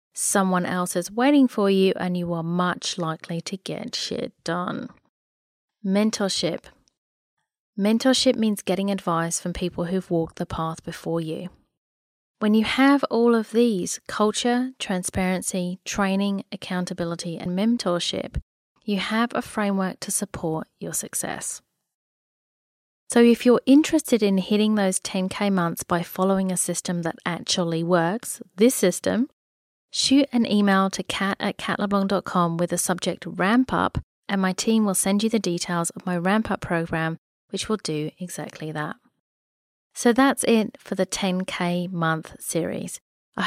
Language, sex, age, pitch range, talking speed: English, female, 30-49, 175-215 Hz, 145 wpm